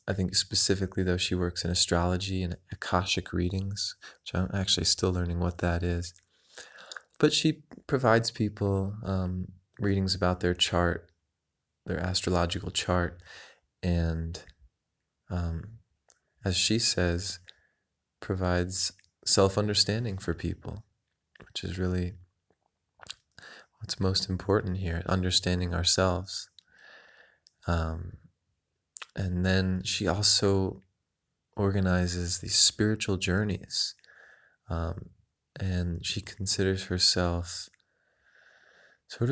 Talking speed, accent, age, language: 95 wpm, American, 20-39, English